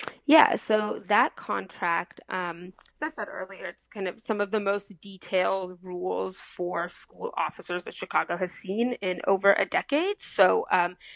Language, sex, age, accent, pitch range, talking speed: English, female, 30-49, American, 185-245 Hz, 165 wpm